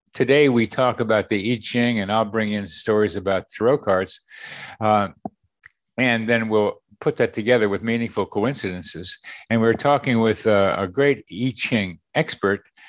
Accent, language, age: American, English, 60-79